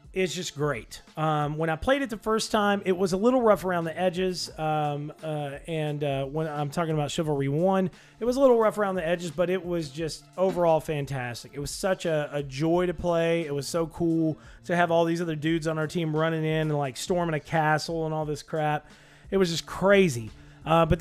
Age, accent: 30-49, American